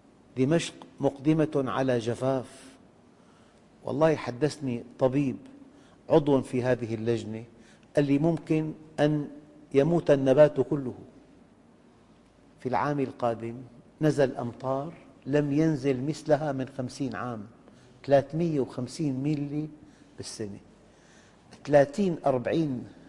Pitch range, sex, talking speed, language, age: 125-155 Hz, male, 90 wpm, English, 50-69